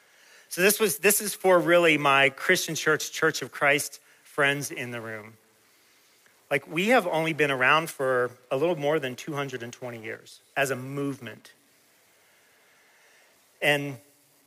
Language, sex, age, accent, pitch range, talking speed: English, male, 40-59, American, 125-155 Hz, 140 wpm